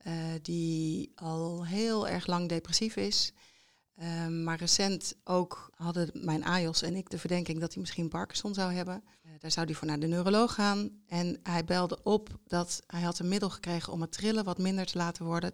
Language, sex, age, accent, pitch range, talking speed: Dutch, female, 40-59, Dutch, 170-195 Hz, 200 wpm